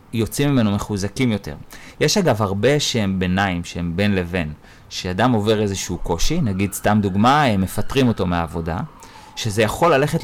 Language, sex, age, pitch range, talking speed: Hebrew, male, 30-49, 95-125 Hz, 150 wpm